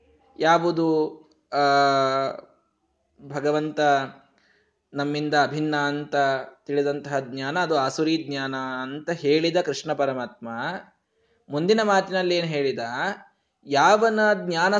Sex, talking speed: male, 85 wpm